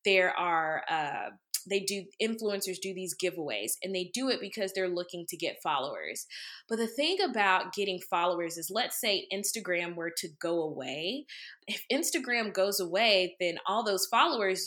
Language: English